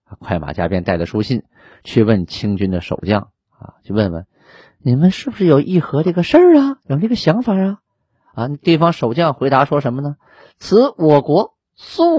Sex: male